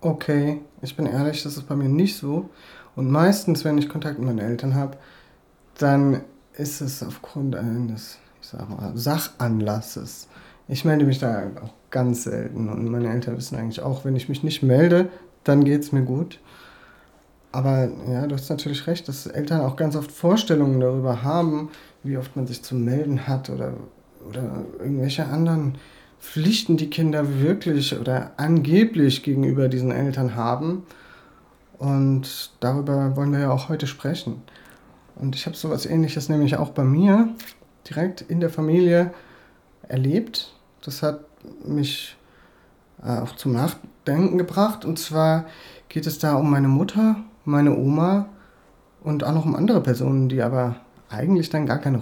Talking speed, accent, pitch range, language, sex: 155 wpm, German, 130-160 Hz, German, male